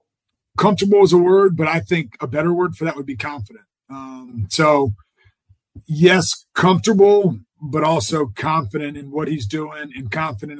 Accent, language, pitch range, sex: American, English, 130-160 Hz, male